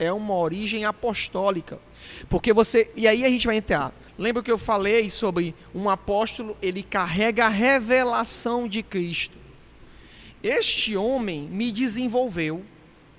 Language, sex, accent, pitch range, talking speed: Portuguese, male, Brazilian, 180-235 Hz, 130 wpm